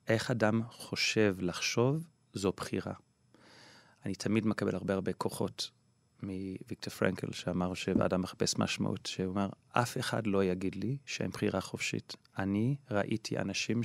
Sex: male